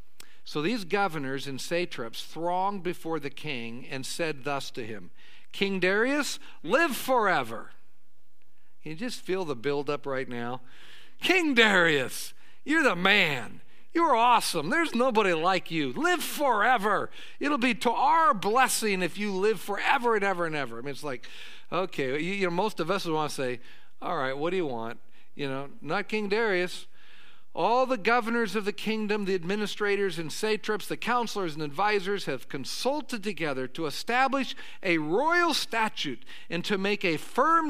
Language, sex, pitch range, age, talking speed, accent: English, male, 160-230 Hz, 50-69, 165 wpm, American